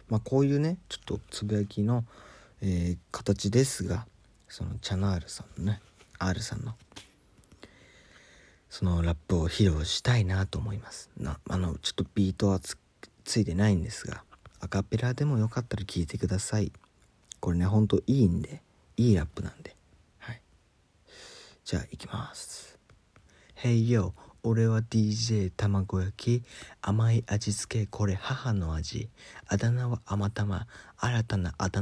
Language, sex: Japanese, male